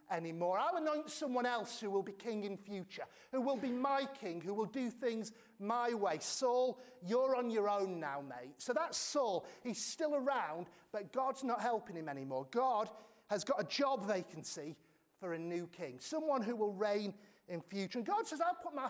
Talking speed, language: 200 wpm, English